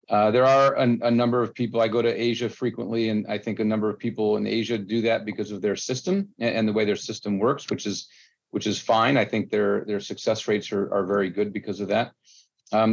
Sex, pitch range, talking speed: male, 105-125 Hz, 250 wpm